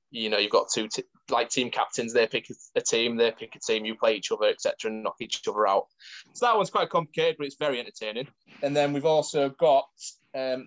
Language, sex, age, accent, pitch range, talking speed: English, male, 20-39, British, 115-165 Hz, 230 wpm